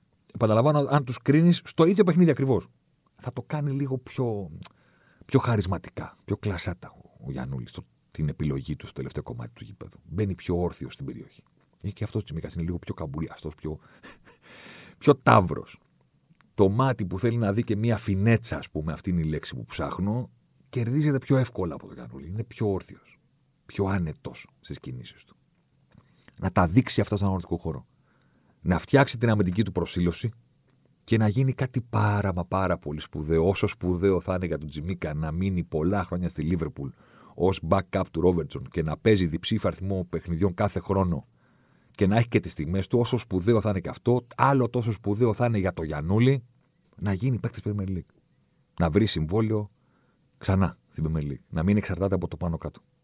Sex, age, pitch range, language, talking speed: male, 50-69, 85-120 Hz, Greek, 180 wpm